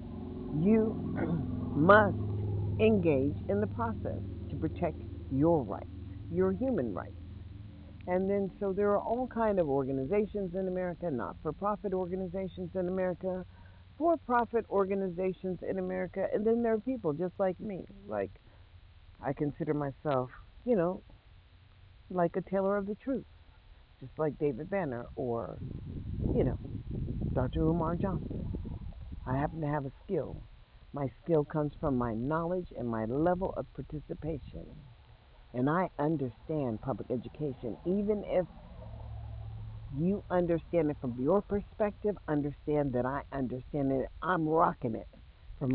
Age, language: 50-69, English